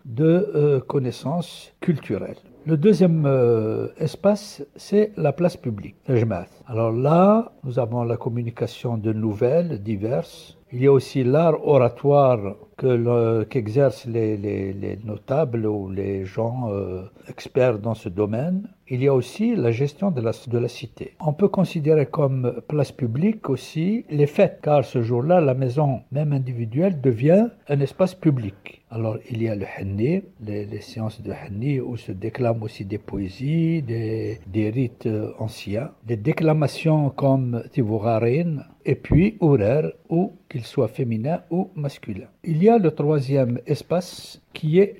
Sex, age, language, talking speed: male, 60-79, French, 155 wpm